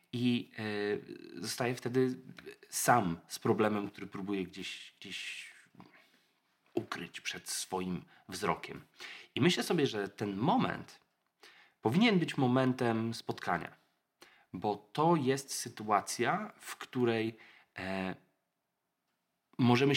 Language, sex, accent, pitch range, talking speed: Polish, male, native, 115-160 Hz, 95 wpm